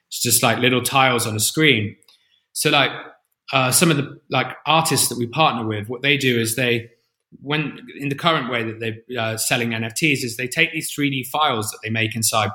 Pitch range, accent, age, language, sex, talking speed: 115-135 Hz, British, 20-39, English, male, 215 wpm